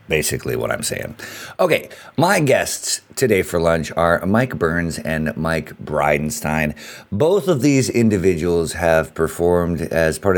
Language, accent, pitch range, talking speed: English, American, 80-115 Hz, 140 wpm